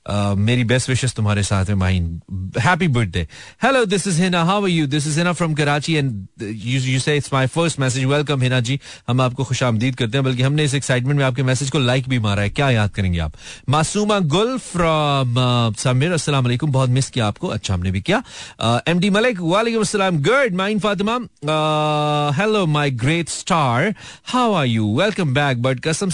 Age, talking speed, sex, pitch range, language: 40-59, 175 wpm, male, 125-165 Hz, Hindi